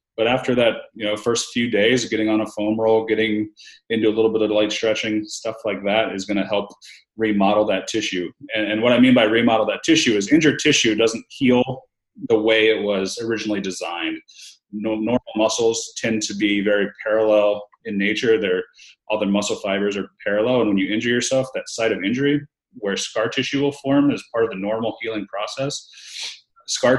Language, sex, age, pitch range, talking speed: English, male, 30-49, 100-120 Hz, 200 wpm